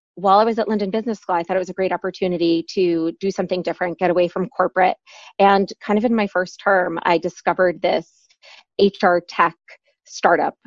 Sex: female